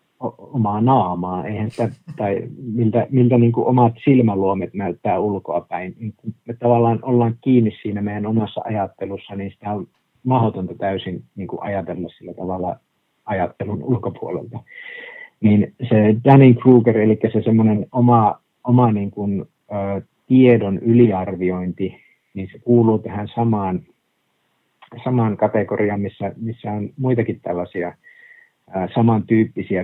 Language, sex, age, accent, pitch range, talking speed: Finnish, male, 50-69, native, 100-120 Hz, 115 wpm